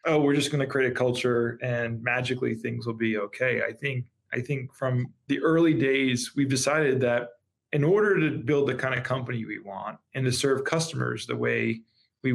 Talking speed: 205 wpm